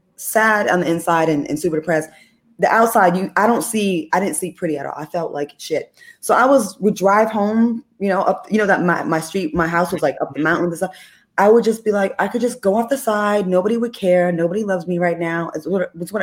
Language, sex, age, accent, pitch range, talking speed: English, female, 20-39, American, 160-195 Hz, 255 wpm